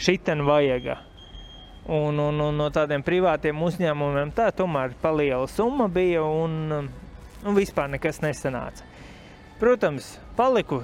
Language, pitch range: English, 145-185 Hz